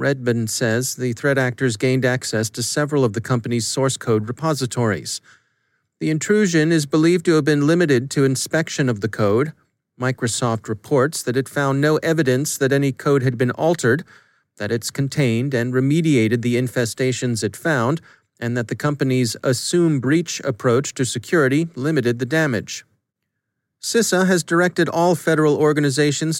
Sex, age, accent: male, 40-59, American